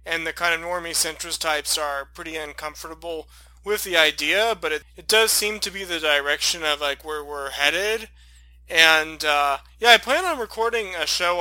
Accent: American